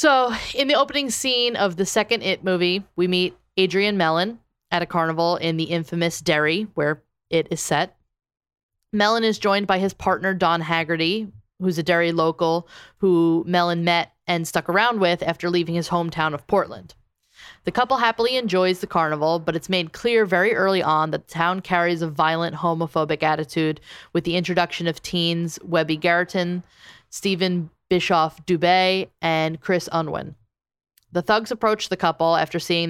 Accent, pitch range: American, 165-190 Hz